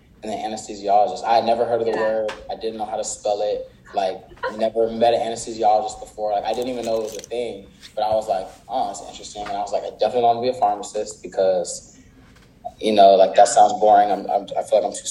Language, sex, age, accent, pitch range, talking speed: English, male, 20-39, American, 100-135 Hz, 255 wpm